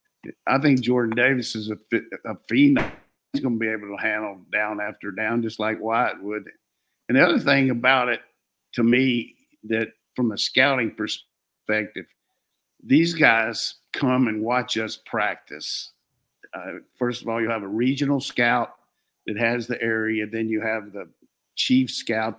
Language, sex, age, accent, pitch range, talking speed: English, male, 50-69, American, 110-120 Hz, 165 wpm